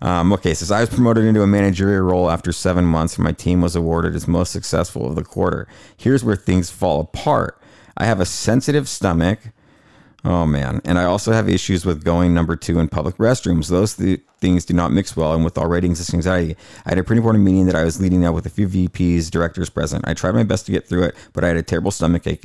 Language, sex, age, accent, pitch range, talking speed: English, male, 40-59, American, 90-110 Hz, 245 wpm